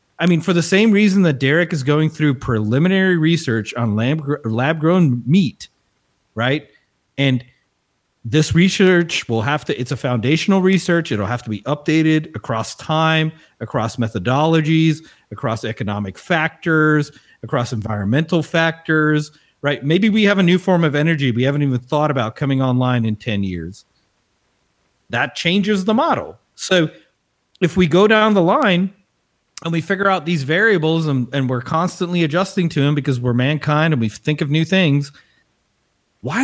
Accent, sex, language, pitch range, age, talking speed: American, male, English, 130-180 Hz, 40-59, 160 wpm